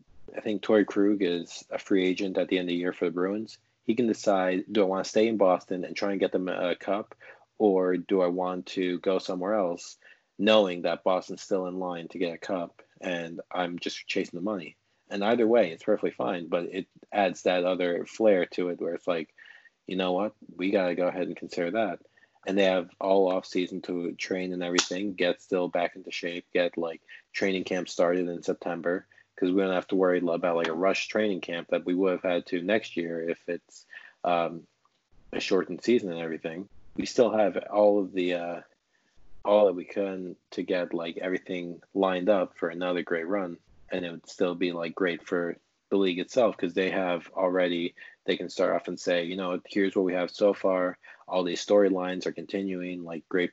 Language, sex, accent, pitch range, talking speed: English, male, American, 85-95 Hz, 215 wpm